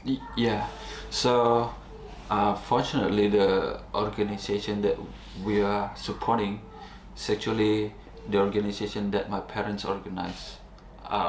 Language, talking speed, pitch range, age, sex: English, 100 wpm, 100-105 Hz, 20-39, male